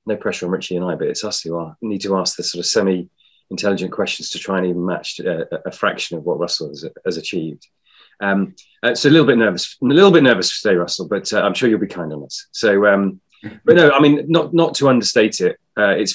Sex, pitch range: male, 90-110 Hz